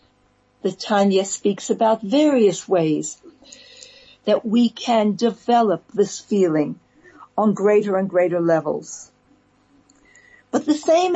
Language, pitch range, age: English, 190-260 Hz, 60-79